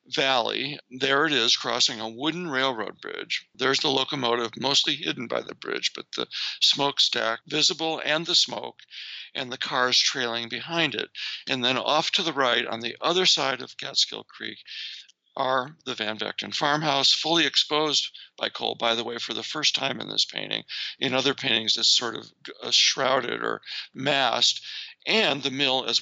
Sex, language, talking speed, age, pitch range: male, English, 175 wpm, 60-79, 115-145 Hz